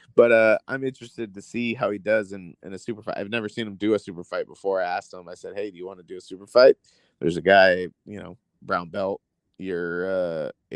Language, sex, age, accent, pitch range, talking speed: English, male, 30-49, American, 95-115 Hz, 255 wpm